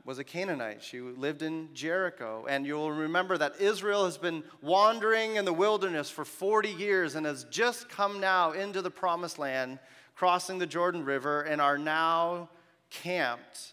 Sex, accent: male, American